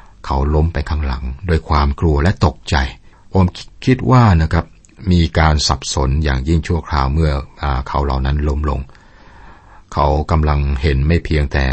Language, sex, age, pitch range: Thai, male, 60-79, 70-90 Hz